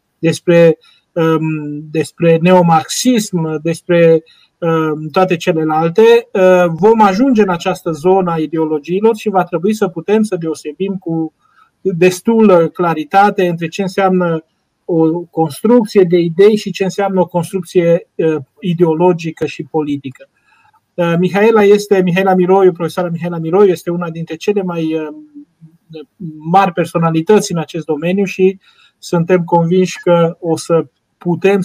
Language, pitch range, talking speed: Romanian, 160-190 Hz, 115 wpm